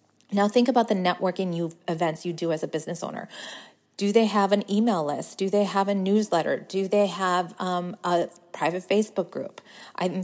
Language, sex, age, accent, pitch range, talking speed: English, female, 40-59, American, 170-205 Hz, 190 wpm